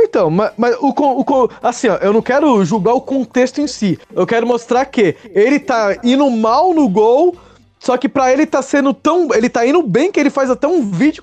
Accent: Brazilian